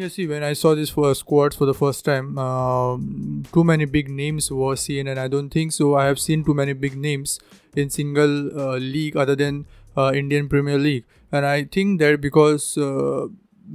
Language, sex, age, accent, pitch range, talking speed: English, male, 20-39, Indian, 140-150 Hz, 205 wpm